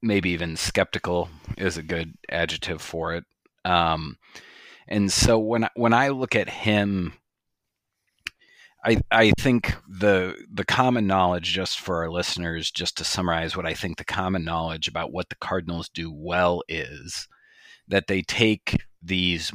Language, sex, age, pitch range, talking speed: English, male, 30-49, 85-100 Hz, 150 wpm